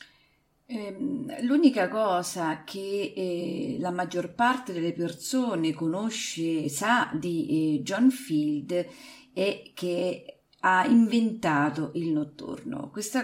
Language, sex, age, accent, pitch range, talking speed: Italian, female, 40-59, native, 160-225 Hz, 110 wpm